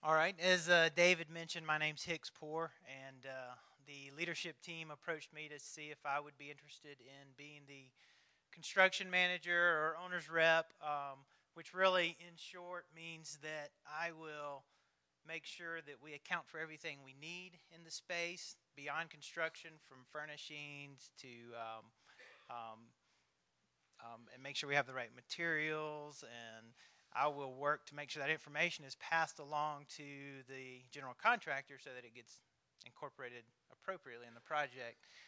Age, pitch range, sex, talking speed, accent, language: 30-49, 125-165 Hz, male, 160 wpm, American, English